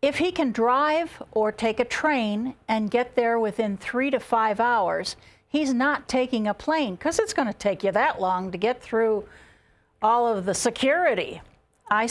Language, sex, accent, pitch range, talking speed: English, female, American, 210-270 Hz, 180 wpm